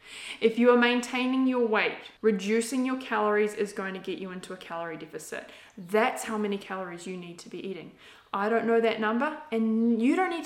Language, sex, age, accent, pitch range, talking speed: English, female, 20-39, Australian, 210-300 Hz, 205 wpm